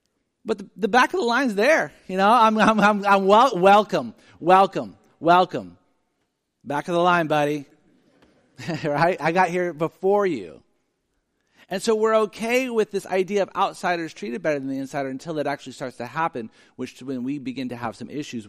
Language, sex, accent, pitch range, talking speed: English, male, American, 110-175 Hz, 190 wpm